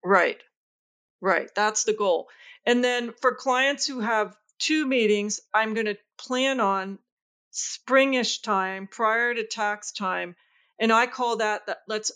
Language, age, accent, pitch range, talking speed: English, 40-59, American, 190-235 Hz, 150 wpm